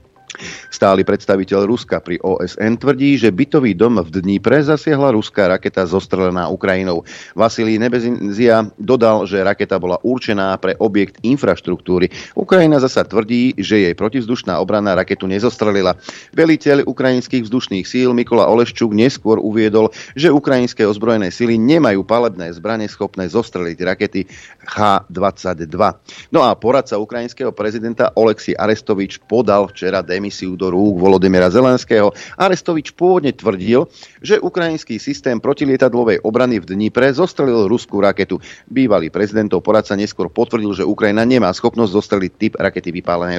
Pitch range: 95-120 Hz